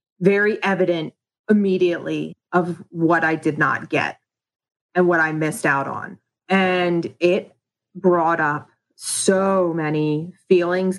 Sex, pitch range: female, 160-190 Hz